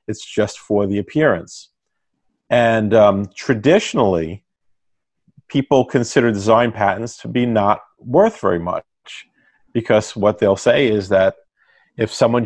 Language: English